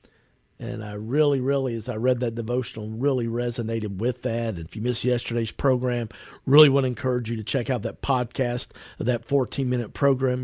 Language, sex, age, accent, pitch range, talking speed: English, male, 50-69, American, 110-140 Hz, 185 wpm